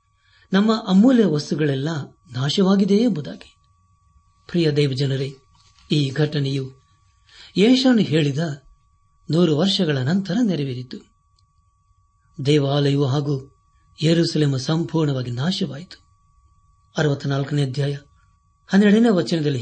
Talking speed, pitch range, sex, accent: 75 wpm, 95-160 Hz, male, native